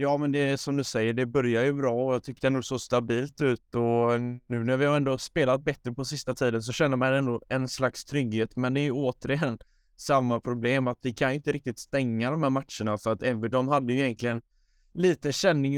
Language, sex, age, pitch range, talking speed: Swedish, male, 20-39, 115-135 Hz, 235 wpm